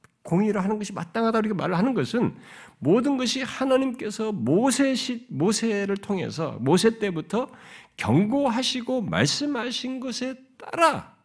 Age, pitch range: 50-69, 195-275 Hz